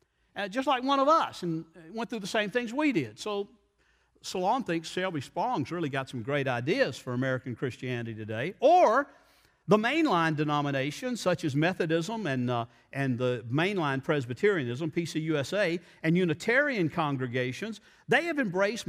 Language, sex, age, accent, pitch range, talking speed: English, male, 50-69, American, 145-210 Hz, 155 wpm